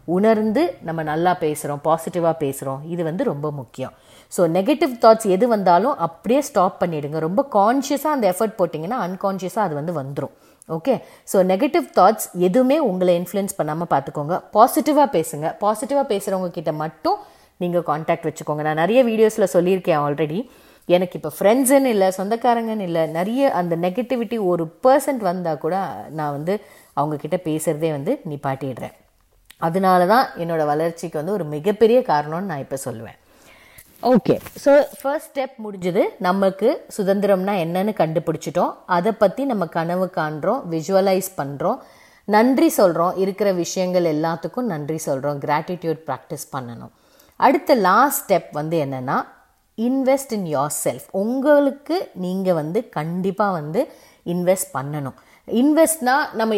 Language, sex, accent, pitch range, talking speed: Tamil, female, native, 160-225 Hz, 130 wpm